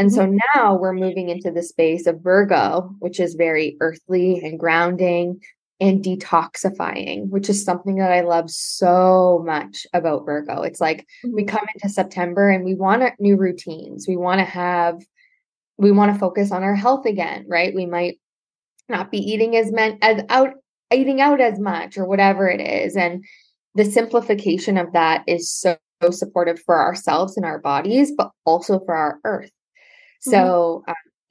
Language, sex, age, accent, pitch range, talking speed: English, female, 10-29, American, 170-215 Hz, 165 wpm